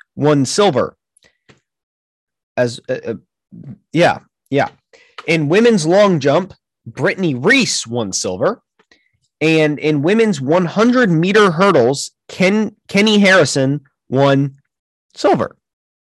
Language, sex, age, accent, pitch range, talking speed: English, male, 30-49, American, 140-200 Hz, 95 wpm